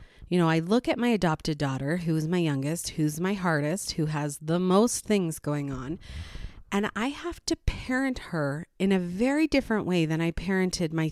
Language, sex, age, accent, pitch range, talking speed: English, female, 30-49, American, 155-205 Hz, 200 wpm